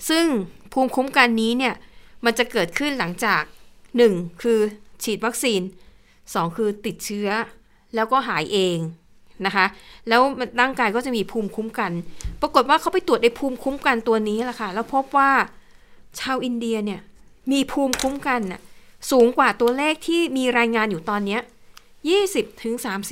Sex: female